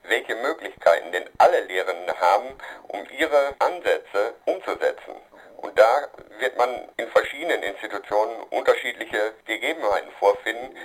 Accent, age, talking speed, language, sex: German, 50-69, 110 wpm, German, male